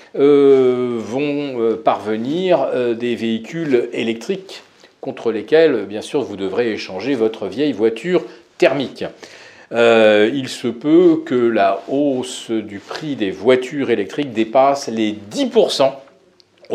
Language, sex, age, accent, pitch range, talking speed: French, male, 40-59, French, 110-140 Hz, 115 wpm